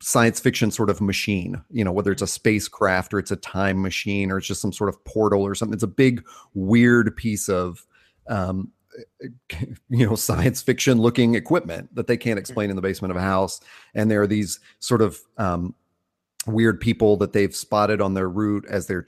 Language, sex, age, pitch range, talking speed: English, male, 30-49, 95-115 Hz, 205 wpm